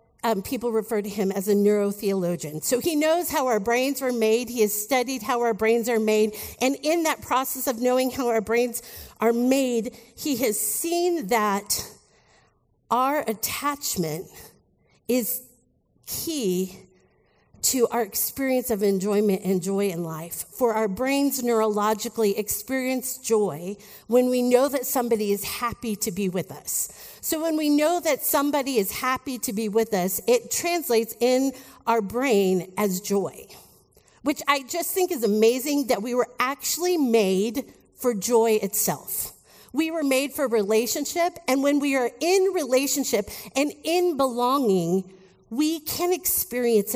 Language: English